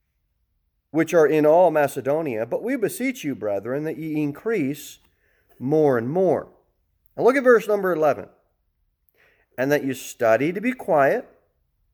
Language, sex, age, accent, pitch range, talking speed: English, male, 40-59, American, 105-160 Hz, 145 wpm